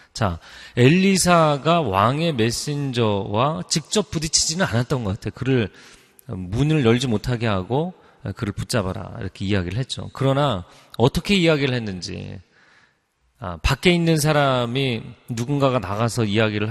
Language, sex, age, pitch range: Korean, male, 30-49, 105-150 Hz